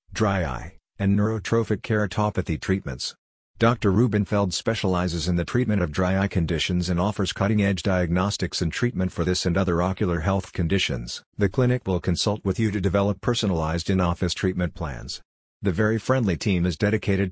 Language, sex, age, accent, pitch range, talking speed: English, male, 50-69, American, 90-105 Hz, 165 wpm